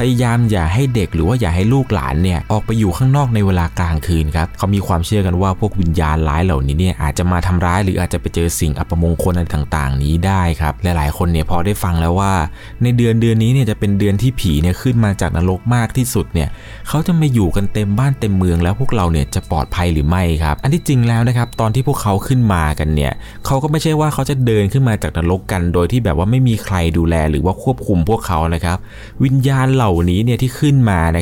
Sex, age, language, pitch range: male, 20-39, Thai, 90-120 Hz